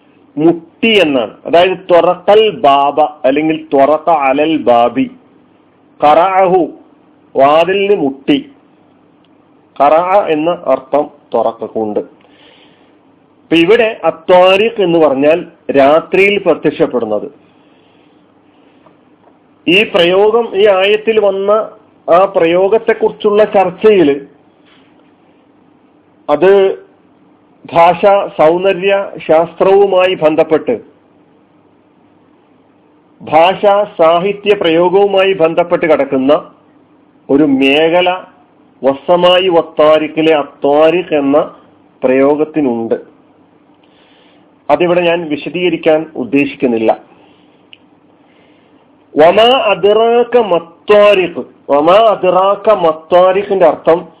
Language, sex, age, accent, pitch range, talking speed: Malayalam, male, 40-59, native, 150-200 Hz, 60 wpm